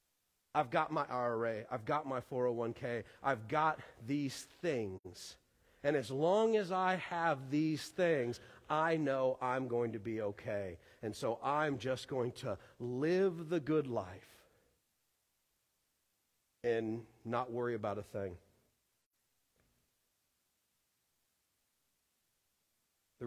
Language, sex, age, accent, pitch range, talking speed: English, male, 40-59, American, 120-170 Hz, 115 wpm